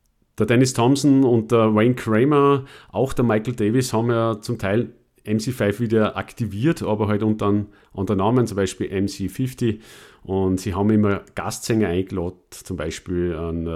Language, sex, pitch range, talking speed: German, male, 95-120 Hz, 155 wpm